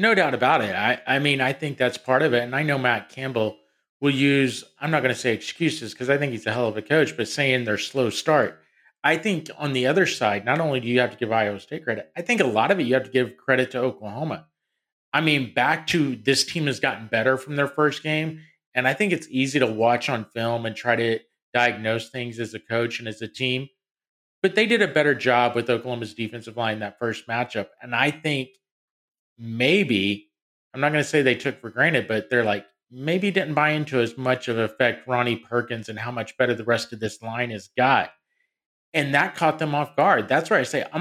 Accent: American